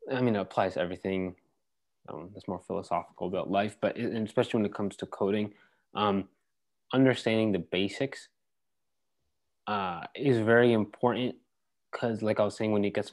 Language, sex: English, male